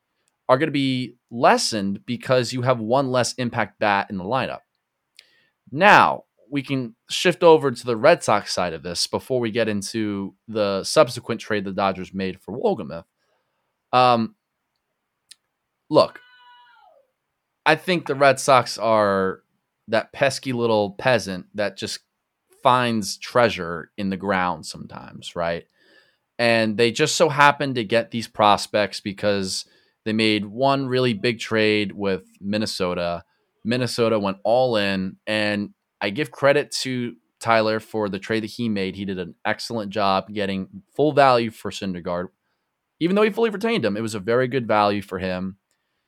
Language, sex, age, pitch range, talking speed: English, male, 20-39, 100-130 Hz, 150 wpm